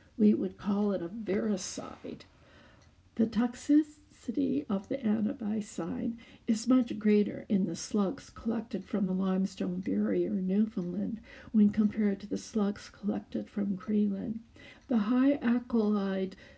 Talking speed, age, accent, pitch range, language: 125 wpm, 60-79, American, 195-235 Hz, English